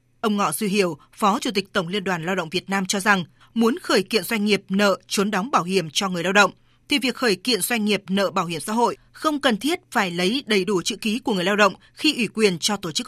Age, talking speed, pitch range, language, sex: 20-39, 275 wpm, 190-235 Hz, Vietnamese, female